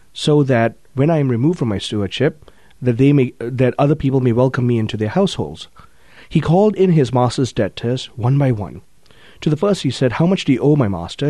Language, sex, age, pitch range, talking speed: English, male, 30-49, 115-150 Hz, 230 wpm